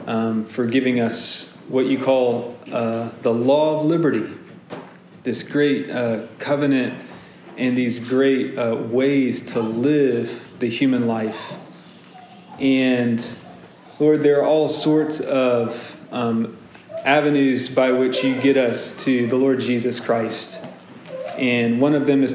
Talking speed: 135 wpm